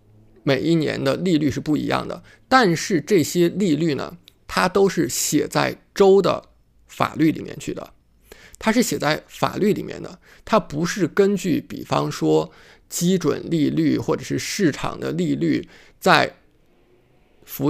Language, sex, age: Chinese, male, 50-69